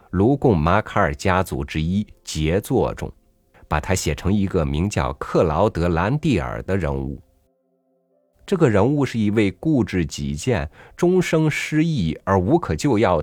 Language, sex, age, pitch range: Chinese, male, 50-69, 75-105 Hz